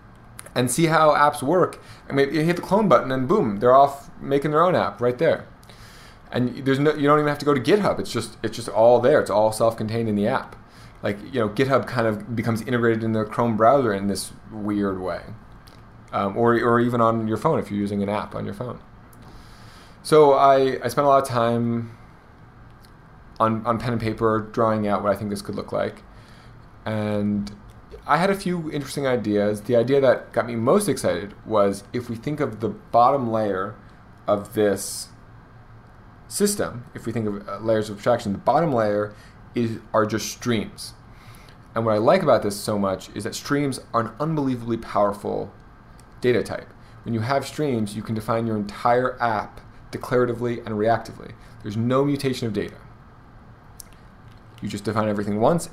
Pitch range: 110-125 Hz